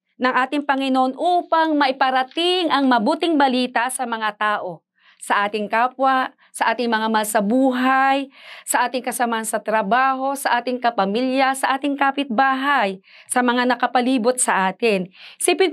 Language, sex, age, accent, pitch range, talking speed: Filipino, female, 40-59, native, 225-280 Hz, 135 wpm